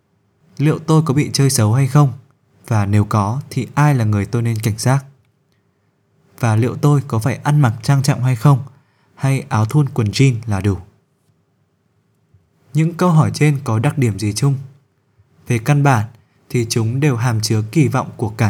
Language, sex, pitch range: Vietnamese, male, 110-140 Hz